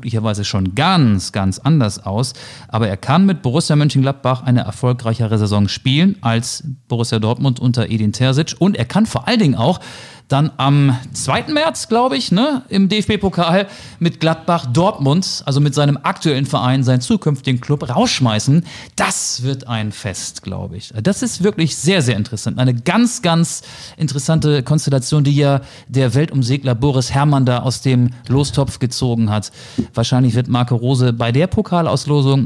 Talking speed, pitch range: 155 wpm, 120-150 Hz